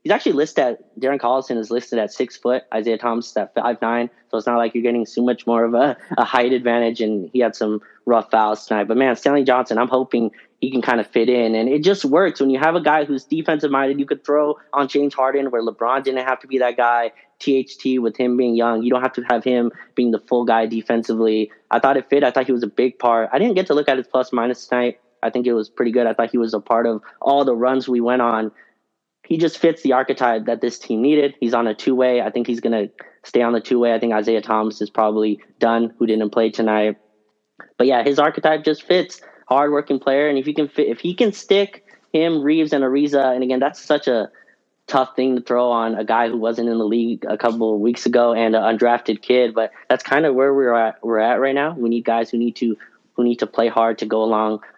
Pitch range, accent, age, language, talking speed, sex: 115-135 Hz, American, 20-39, English, 260 wpm, male